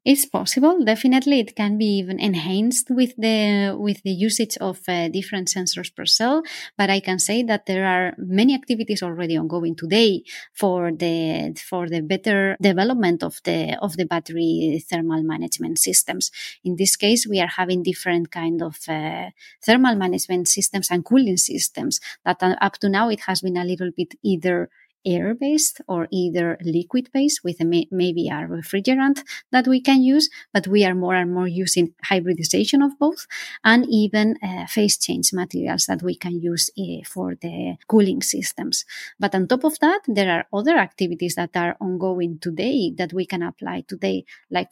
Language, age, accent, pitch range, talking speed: English, 20-39, Spanish, 175-225 Hz, 175 wpm